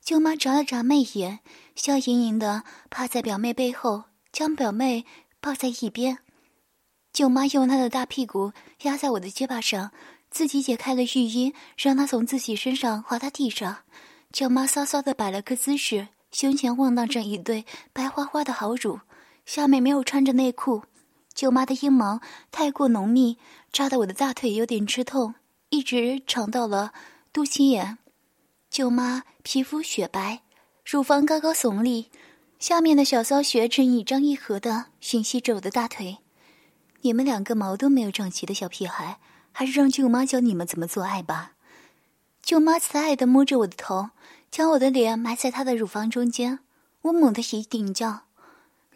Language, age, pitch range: Chinese, 20-39, 230-285 Hz